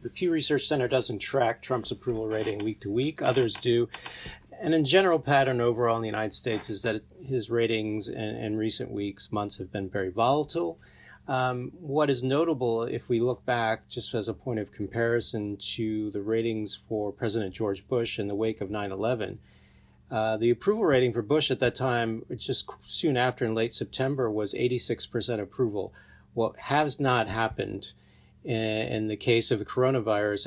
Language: English